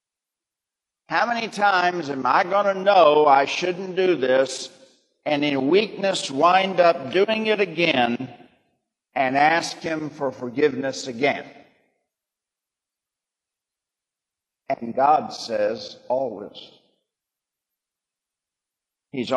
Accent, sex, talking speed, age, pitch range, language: American, male, 95 wpm, 50-69, 145-230 Hz, English